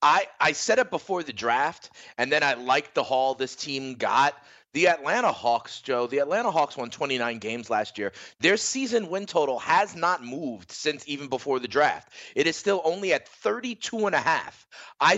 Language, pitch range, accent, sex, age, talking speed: English, 130-190 Hz, American, male, 30-49, 200 wpm